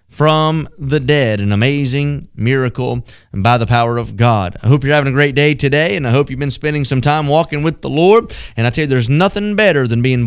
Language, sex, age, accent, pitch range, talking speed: English, male, 30-49, American, 115-150 Hz, 235 wpm